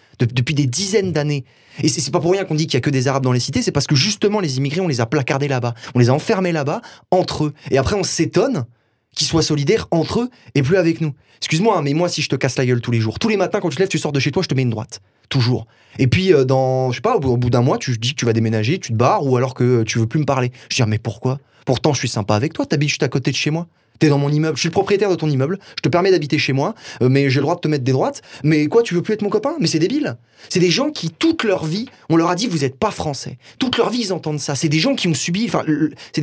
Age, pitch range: 20-39, 130-180 Hz